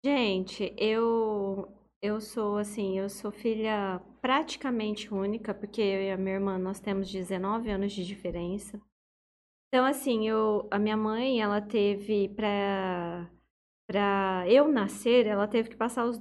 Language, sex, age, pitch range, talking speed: Portuguese, female, 20-39, 205-235 Hz, 145 wpm